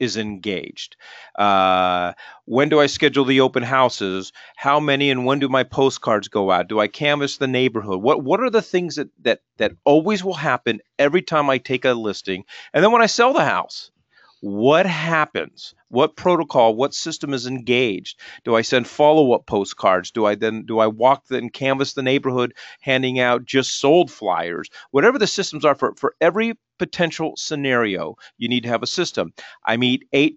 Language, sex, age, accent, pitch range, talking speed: English, male, 40-59, American, 110-150 Hz, 185 wpm